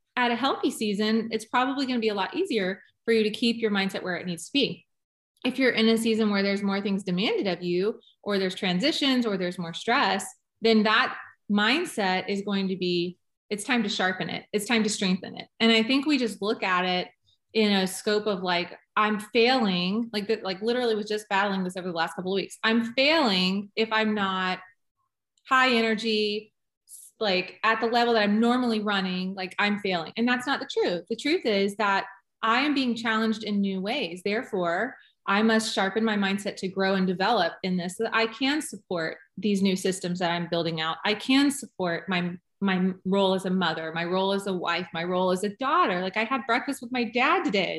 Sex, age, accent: female, 20-39, American